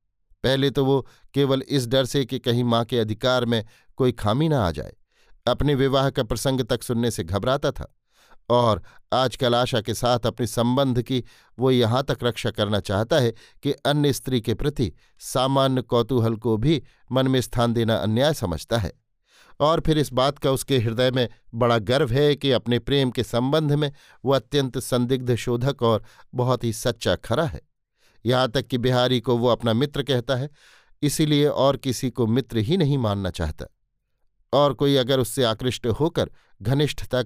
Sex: male